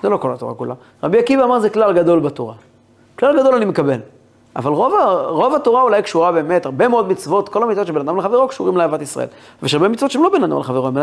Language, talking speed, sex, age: Hebrew, 240 wpm, male, 30-49